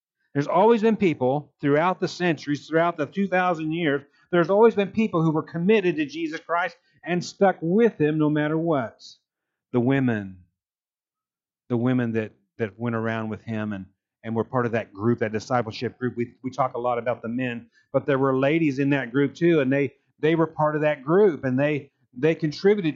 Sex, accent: male, American